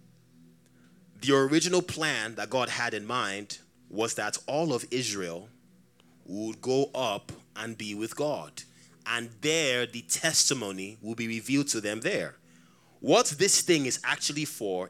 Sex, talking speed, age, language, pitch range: male, 145 wpm, 20-39, English, 85-130 Hz